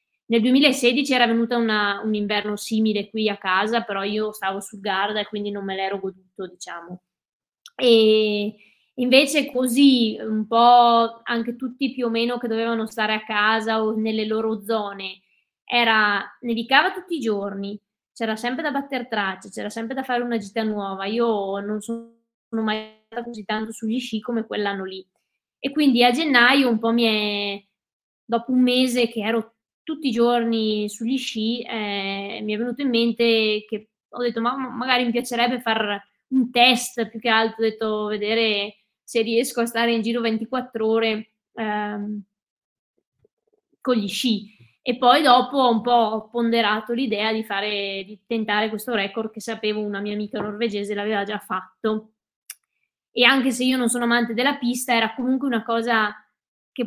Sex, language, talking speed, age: female, Italian, 170 wpm, 20-39